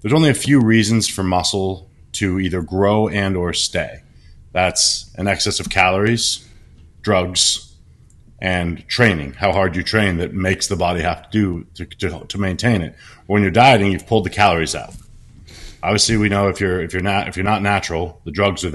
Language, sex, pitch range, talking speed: English, male, 90-105 Hz, 190 wpm